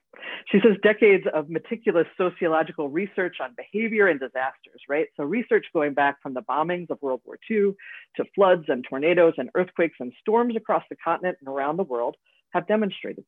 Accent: American